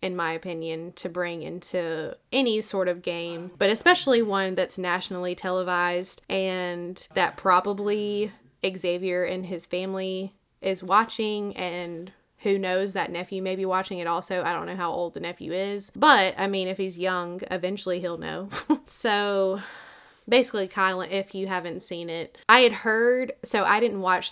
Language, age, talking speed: English, 20-39, 165 wpm